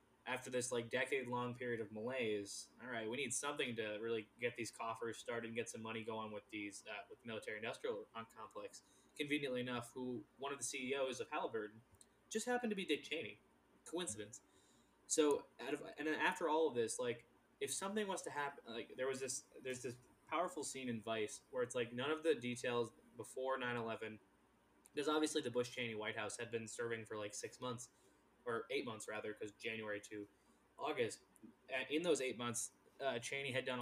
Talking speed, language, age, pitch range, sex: 200 wpm, English, 20-39, 115-155 Hz, male